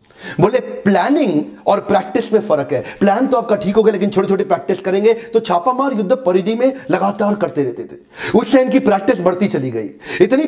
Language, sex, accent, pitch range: Hindi, male, native, 170-225 Hz